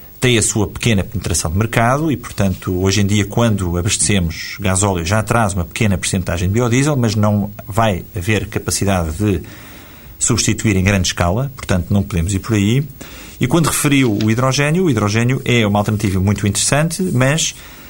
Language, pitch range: Portuguese, 100-130 Hz